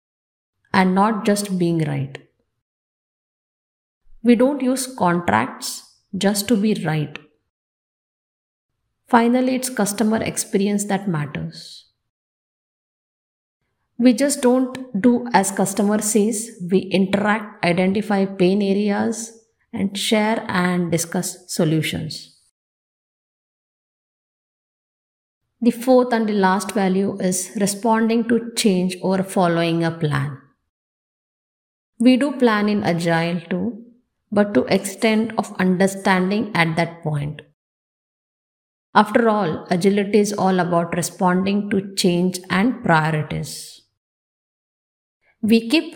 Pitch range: 170-225 Hz